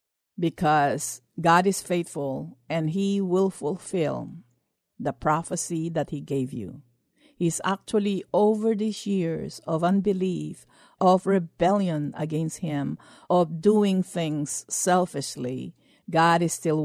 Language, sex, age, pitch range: English, female, 50-69, 150-200 Hz